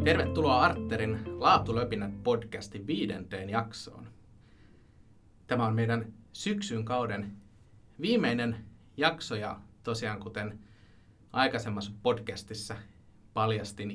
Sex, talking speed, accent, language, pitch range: male, 80 wpm, native, Finnish, 100-115 Hz